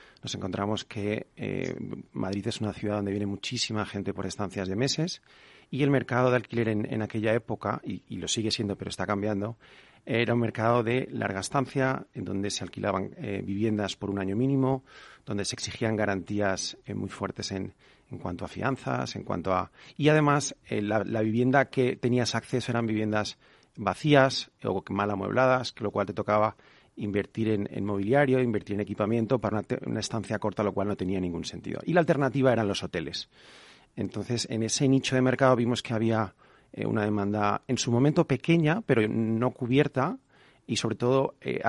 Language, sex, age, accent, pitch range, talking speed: Spanish, male, 40-59, Spanish, 105-125 Hz, 190 wpm